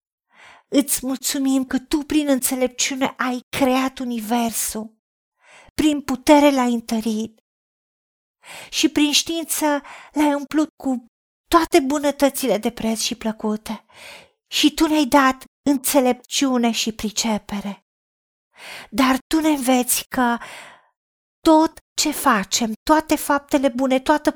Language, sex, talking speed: Romanian, female, 110 wpm